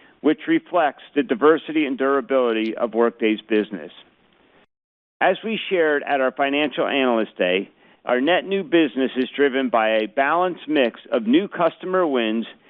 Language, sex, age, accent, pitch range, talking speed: English, male, 50-69, American, 130-180 Hz, 145 wpm